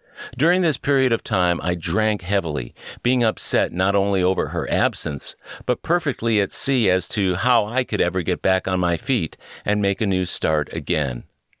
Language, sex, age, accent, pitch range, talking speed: English, male, 50-69, American, 85-115 Hz, 185 wpm